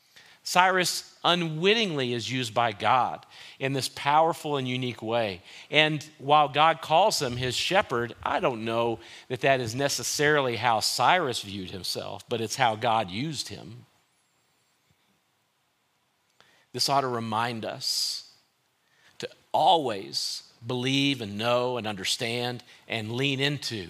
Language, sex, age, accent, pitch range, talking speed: English, male, 40-59, American, 115-140 Hz, 130 wpm